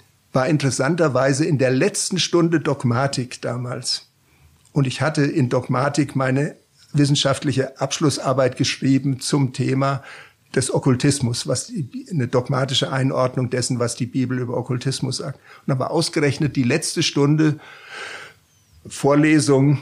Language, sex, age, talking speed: German, male, 50-69, 125 wpm